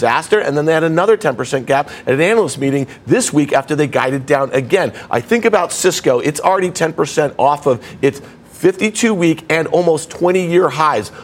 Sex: male